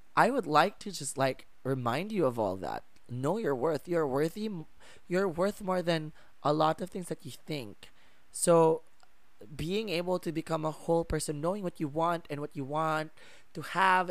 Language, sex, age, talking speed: English, male, 20-39, 190 wpm